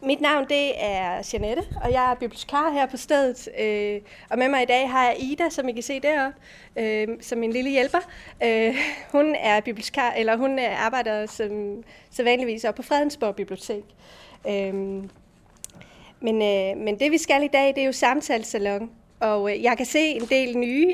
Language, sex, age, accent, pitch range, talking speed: Danish, female, 30-49, native, 215-270 Hz, 170 wpm